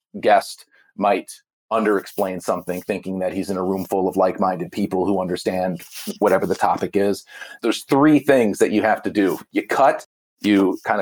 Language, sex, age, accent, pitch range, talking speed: English, male, 40-59, American, 105-140 Hz, 175 wpm